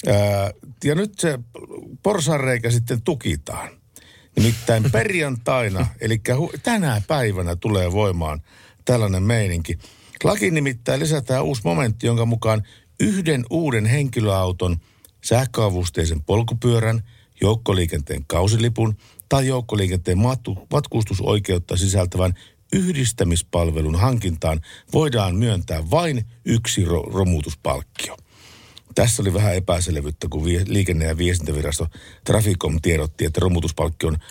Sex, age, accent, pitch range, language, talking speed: male, 50-69, native, 90-120 Hz, Finnish, 95 wpm